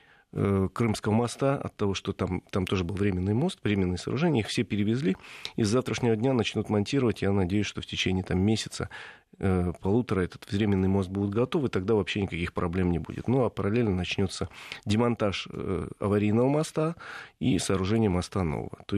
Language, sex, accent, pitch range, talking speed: Russian, male, native, 95-115 Hz, 175 wpm